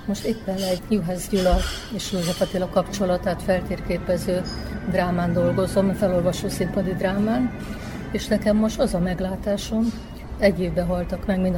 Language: Hungarian